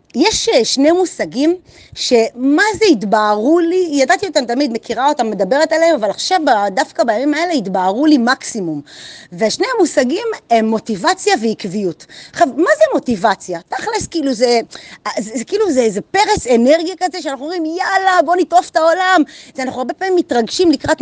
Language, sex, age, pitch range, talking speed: Hebrew, female, 30-49, 230-330 Hz, 150 wpm